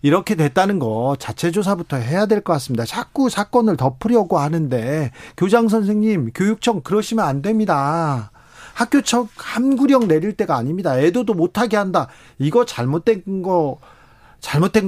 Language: Korean